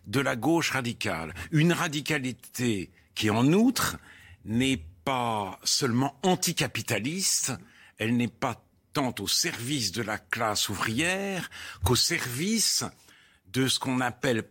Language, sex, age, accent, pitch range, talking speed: French, male, 60-79, French, 100-165 Hz, 120 wpm